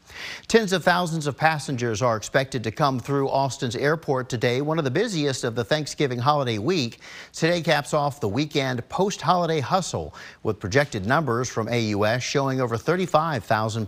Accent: American